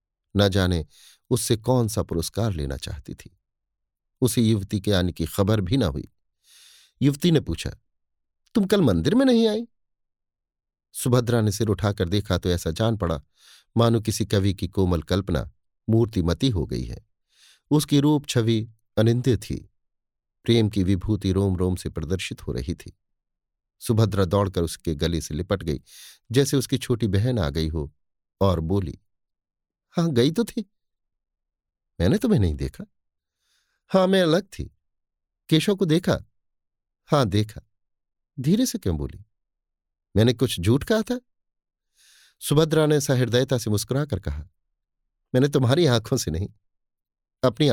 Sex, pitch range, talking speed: male, 90-130 Hz, 145 wpm